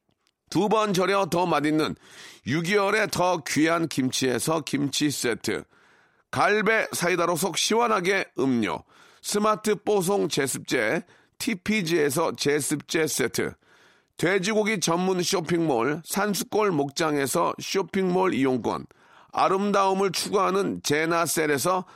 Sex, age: male, 40-59